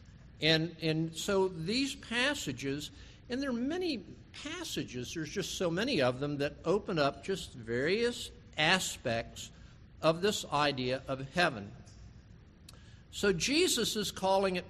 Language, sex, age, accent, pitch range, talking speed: English, male, 50-69, American, 120-180 Hz, 130 wpm